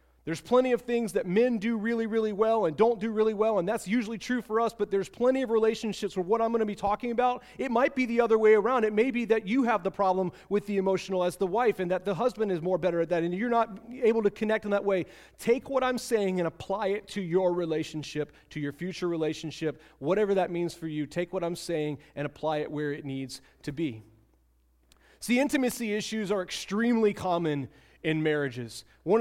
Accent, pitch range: American, 165-220 Hz